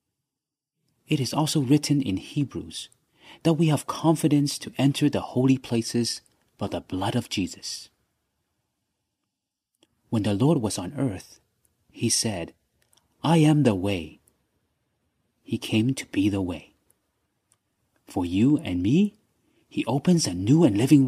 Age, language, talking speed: 30-49, English, 135 wpm